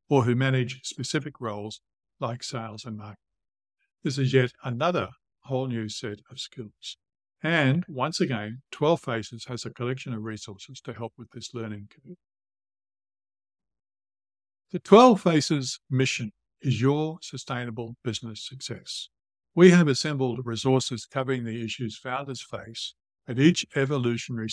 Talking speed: 130 wpm